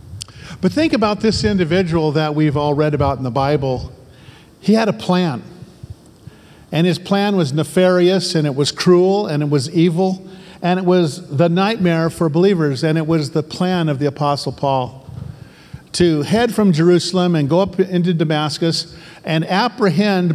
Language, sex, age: English, male, 50-69